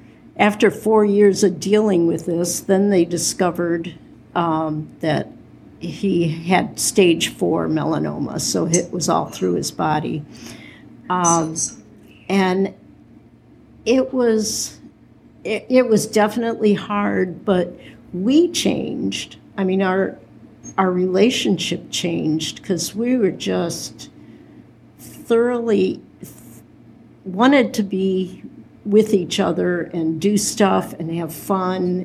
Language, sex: English, female